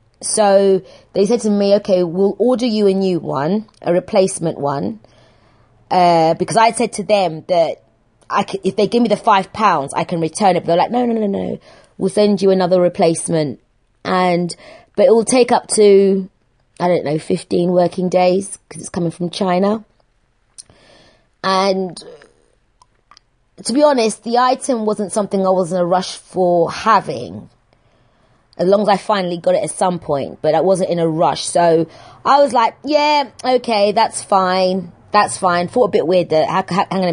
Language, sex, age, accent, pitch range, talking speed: English, female, 20-39, British, 170-210 Hz, 180 wpm